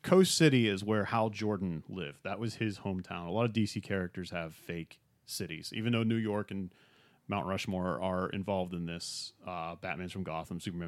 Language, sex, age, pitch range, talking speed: English, male, 30-49, 95-120 Hz, 195 wpm